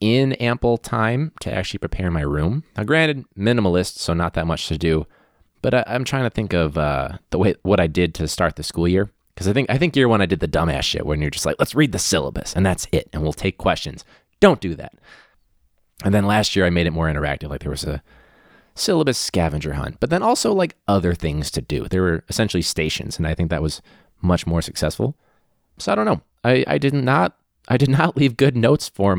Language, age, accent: English, 20-39, American